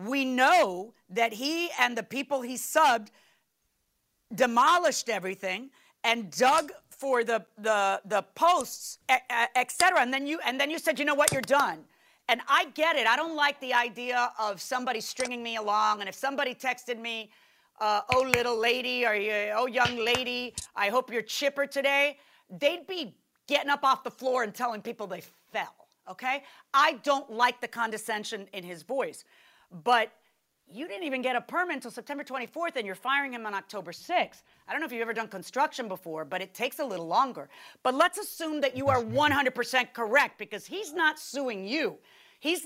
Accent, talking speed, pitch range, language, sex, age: American, 185 wpm, 225-290 Hz, English, female, 50-69